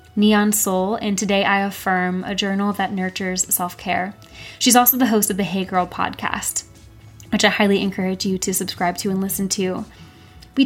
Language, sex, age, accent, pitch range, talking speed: English, female, 20-39, American, 185-210 Hz, 185 wpm